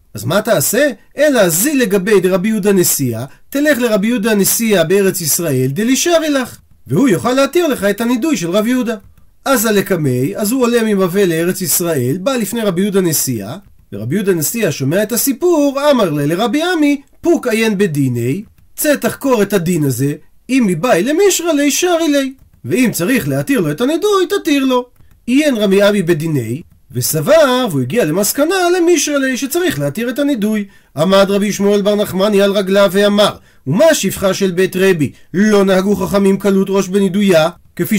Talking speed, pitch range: 135 wpm, 175-260 Hz